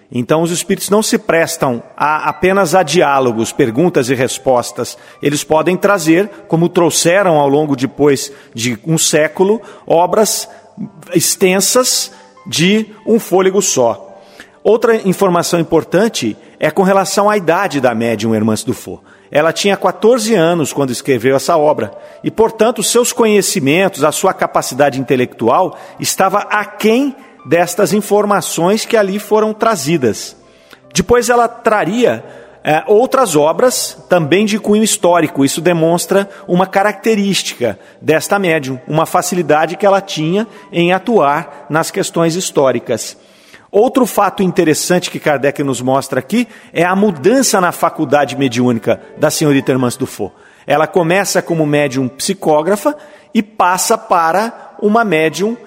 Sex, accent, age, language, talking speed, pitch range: male, Brazilian, 40-59, Portuguese, 130 wpm, 145-210 Hz